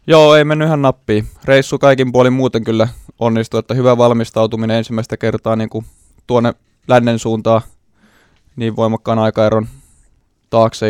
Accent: native